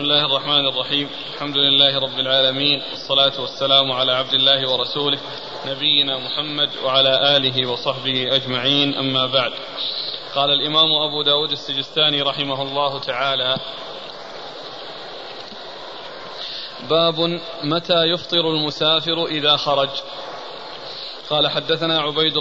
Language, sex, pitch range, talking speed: Arabic, male, 140-160 Hz, 105 wpm